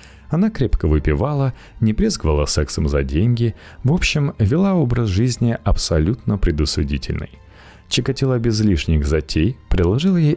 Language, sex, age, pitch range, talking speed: Russian, male, 30-49, 80-115 Hz, 120 wpm